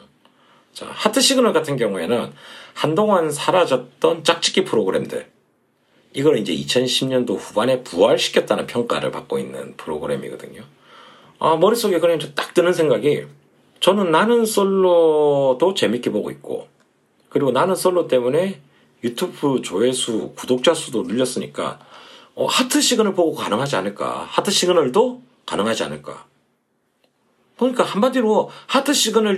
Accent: native